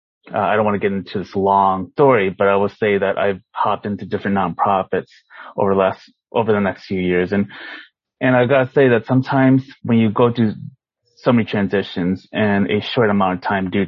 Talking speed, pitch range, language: 210 wpm, 95-115 Hz, English